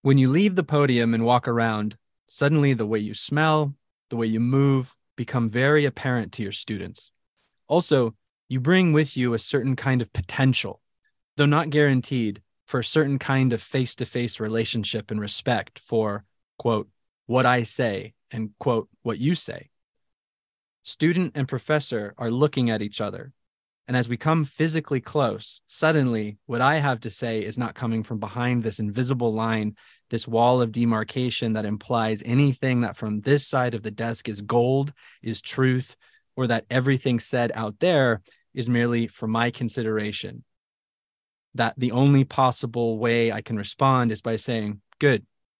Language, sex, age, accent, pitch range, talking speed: English, male, 20-39, American, 110-135 Hz, 165 wpm